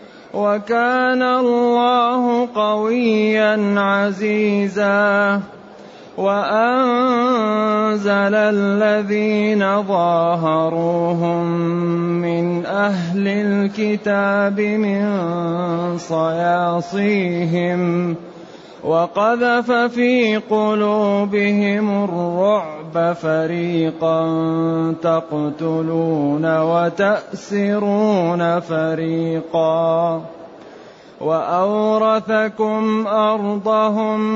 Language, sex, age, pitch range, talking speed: Arabic, male, 30-49, 180-220 Hz, 40 wpm